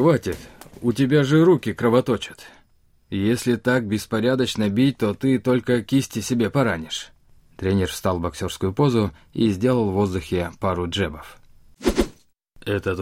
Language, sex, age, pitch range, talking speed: Russian, male, 20-39, 100-130 Hz, 130 wpm